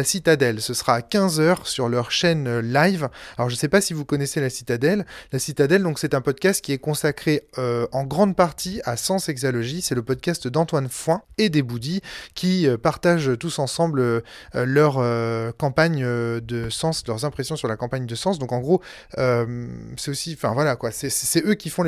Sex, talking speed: male, 205 wpm